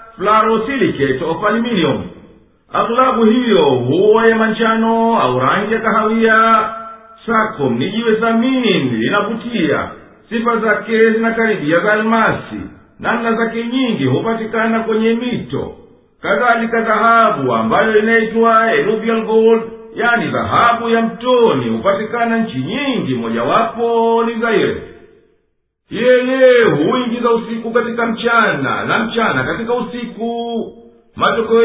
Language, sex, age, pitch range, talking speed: Swahili, male, 50-69, 215-235 Hz, 95 wpm